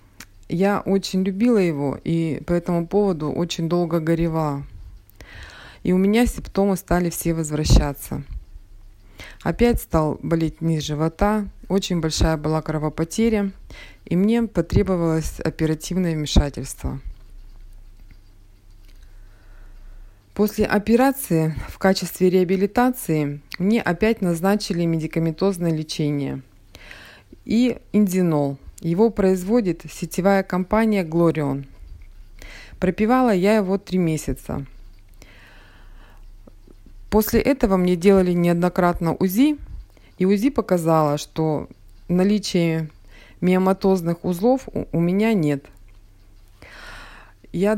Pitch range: 140-195 Hz